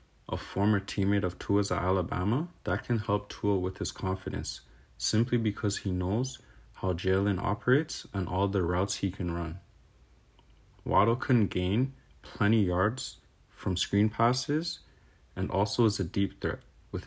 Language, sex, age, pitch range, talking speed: English, male, 30-49, 90-110 Hz, 150 wpm